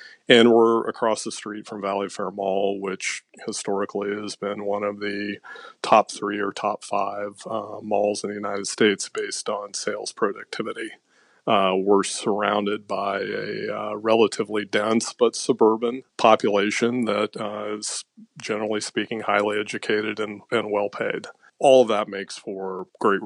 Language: English